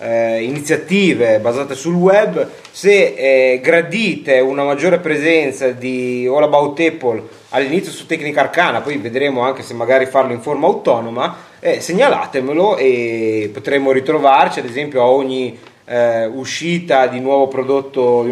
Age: 30-49